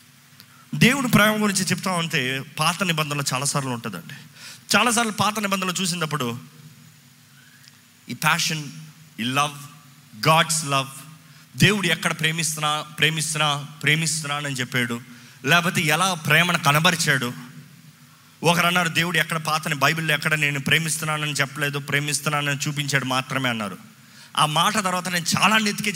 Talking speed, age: 110 wpm, 30-49